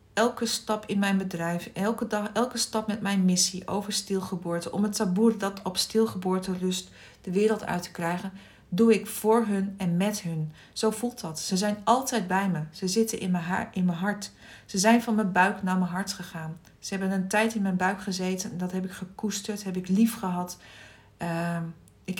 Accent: Dutch